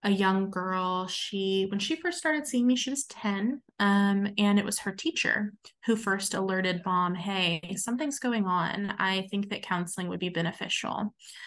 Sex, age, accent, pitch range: female, 20-39, American, 185-205 Hz